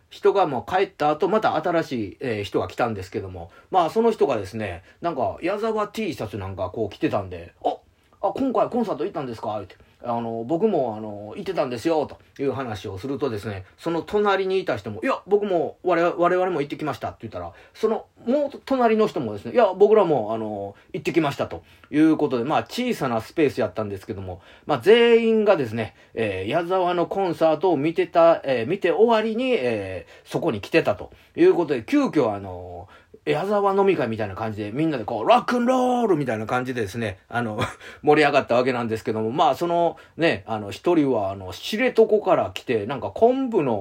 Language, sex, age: Japanese, male, 30-49